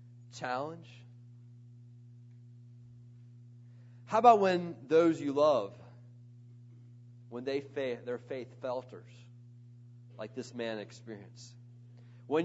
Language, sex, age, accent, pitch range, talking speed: English, male, 40-59, American, 120-130 Hz, 85 wpm